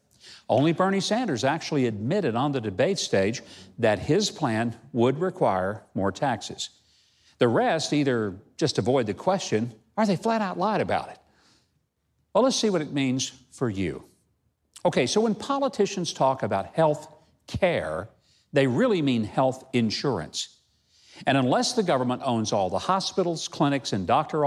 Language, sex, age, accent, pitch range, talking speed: English, male, 50-69, American, 115-165 Hz, 150 wpm